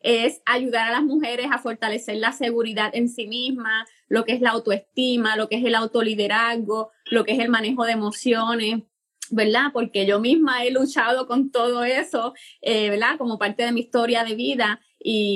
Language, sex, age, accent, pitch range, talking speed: Spanish, female, 20-39, American, 220-255 Hz, 190 wpm